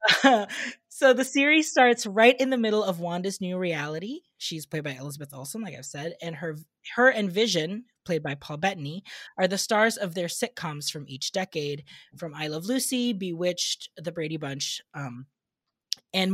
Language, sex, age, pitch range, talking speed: English, female, 20-39, 160-220 Hz, 180 wpm